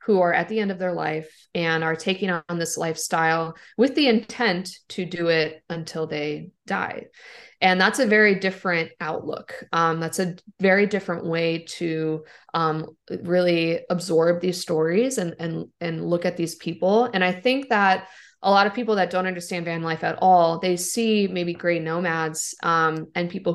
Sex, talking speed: female, 180 wpm